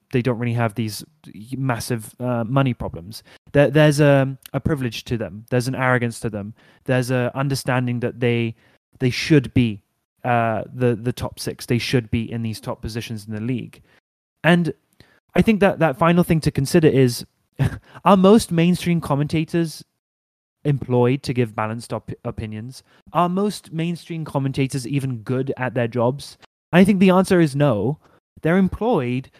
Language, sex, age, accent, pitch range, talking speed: English, male, 20-39, British, 120-155 Hz, 165 wpm